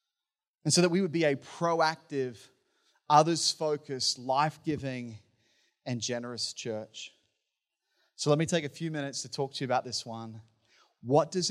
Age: 30-49